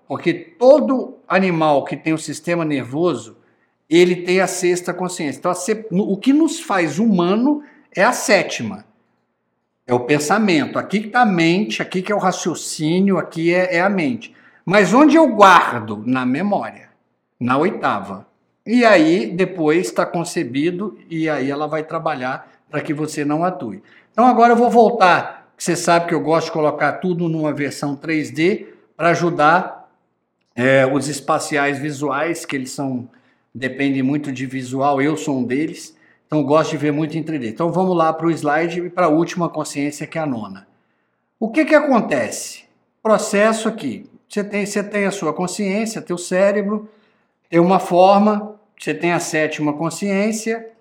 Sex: male